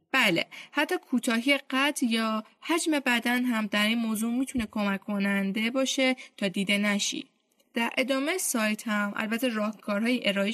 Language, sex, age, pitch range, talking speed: Persian, female, 10-29, 210-265 Hz, 140 wpm